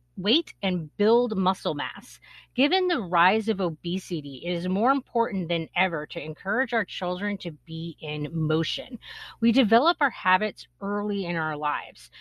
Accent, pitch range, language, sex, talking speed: American, 165-230 Hz, English, female, 155 wpm